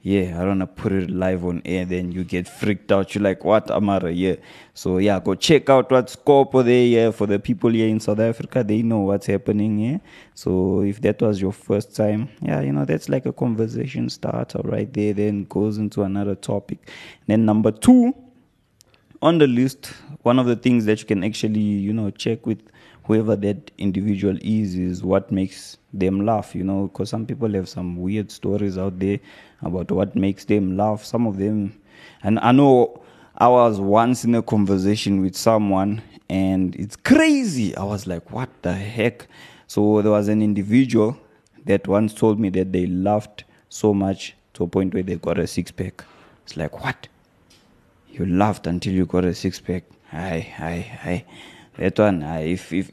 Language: English